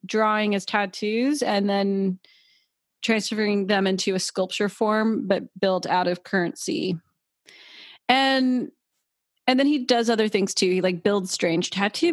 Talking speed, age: 145 wpm, 30-49